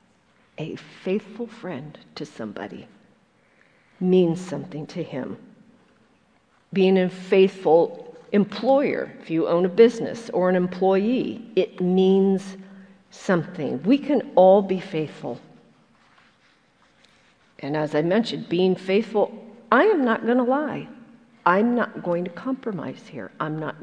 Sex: female